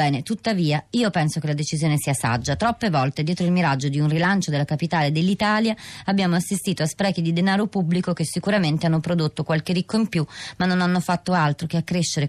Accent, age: native, 30-49